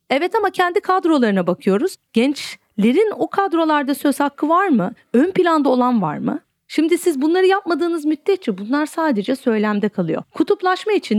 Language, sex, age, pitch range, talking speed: Turkish, female, 40-59, 205-290 Hz, 150 wpm